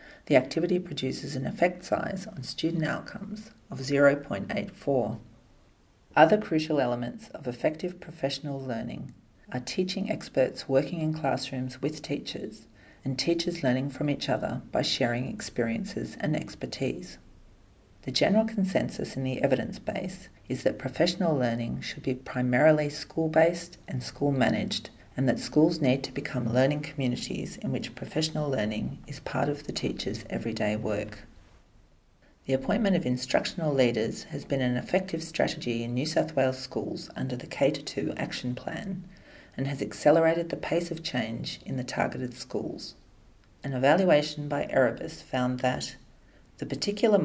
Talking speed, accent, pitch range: 140 wpm, Australian, 125-165 Hz